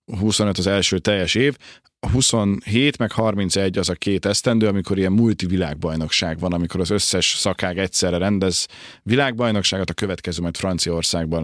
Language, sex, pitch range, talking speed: Hungarian, male, 90-110 Hz, 145 wpm